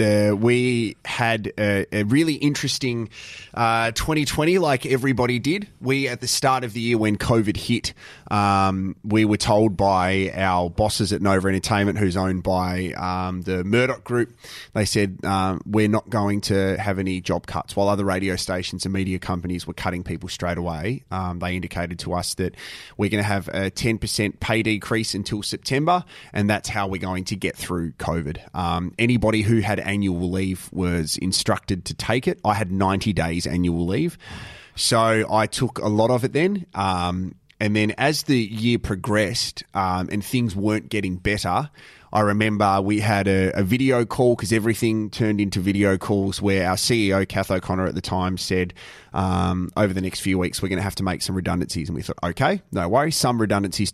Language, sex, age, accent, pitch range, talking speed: English, male, 20-39, Australian, 95-115 Hz, 190 wpm